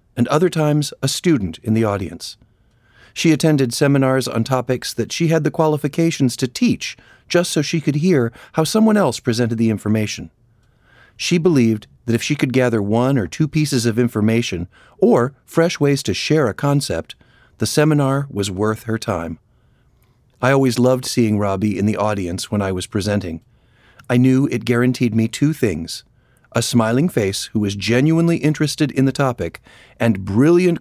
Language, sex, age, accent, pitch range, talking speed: English, male, 40-59, American, 110-145 Hz, 170 wpm